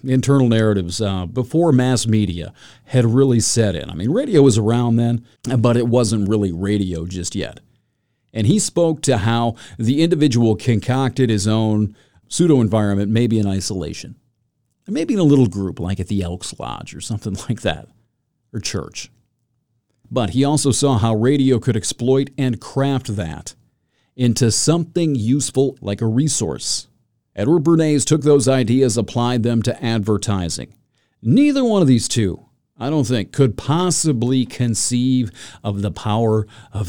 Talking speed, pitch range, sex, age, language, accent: 155 wpm, 110-135 Hz, male, 40-59, English, American